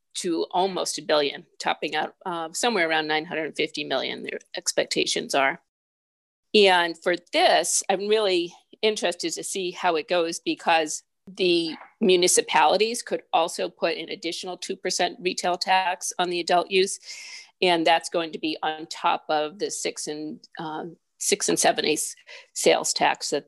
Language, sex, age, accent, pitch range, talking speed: English, female, 50-69, American, 160-195 Hz, 145 wpm